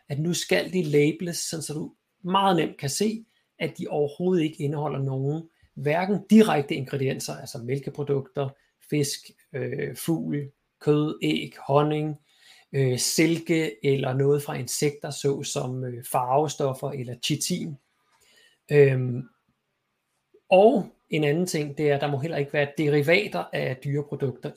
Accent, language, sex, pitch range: native, Danish, male, 135-160 Hz